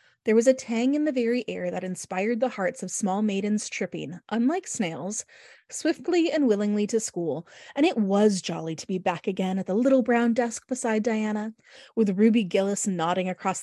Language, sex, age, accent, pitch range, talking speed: English, female, 20-39, American, 195-265 Hz, 190 wpm